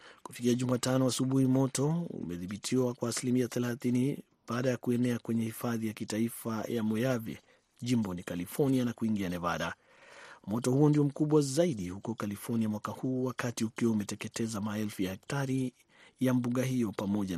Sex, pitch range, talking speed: male, 105-130 Hz, 140 wpm